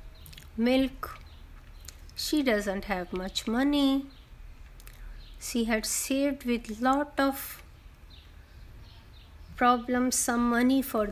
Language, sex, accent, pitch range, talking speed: Hindi, female, native, 195-250 Hz, 85 wpm